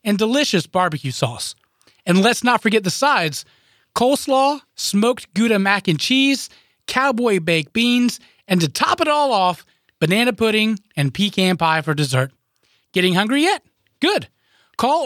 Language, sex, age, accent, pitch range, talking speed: English, male, 30-49, American, 165-225 Hz, 150 wpm